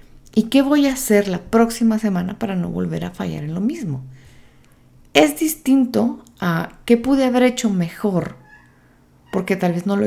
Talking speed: 175 wpm